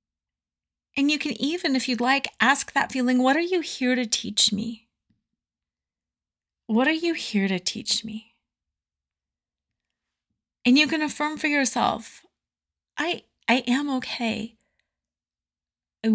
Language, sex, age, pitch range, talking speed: English, female, 30-49, 180-245 Hz, 130 wpm